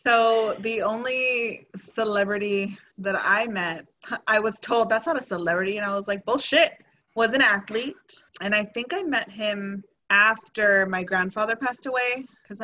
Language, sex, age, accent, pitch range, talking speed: English, female, 20-39, American, 185-220 Hz, 160 wpm